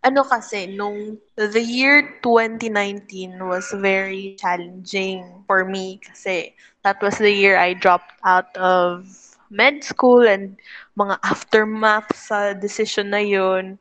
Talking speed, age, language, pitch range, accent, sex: 125 wpm, 20-39, Filipino, 195-225 Hz, native, female